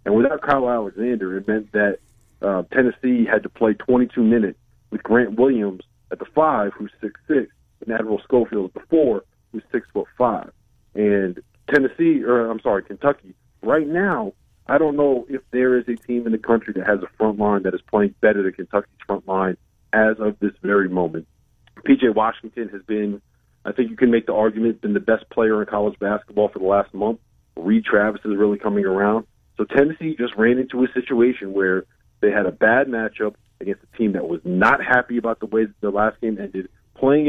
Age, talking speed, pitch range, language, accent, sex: 40-59, 205 wpm, 100-120 Hz, English, American, male